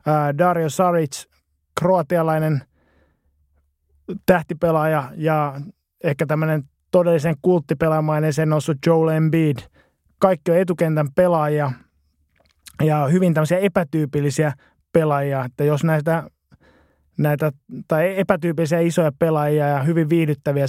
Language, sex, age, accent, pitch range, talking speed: Finnish, male, 20-39, native, 145-170 Hz, 95 wpm